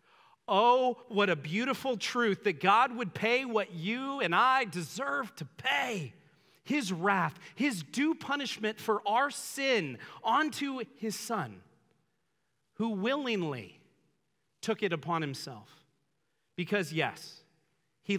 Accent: American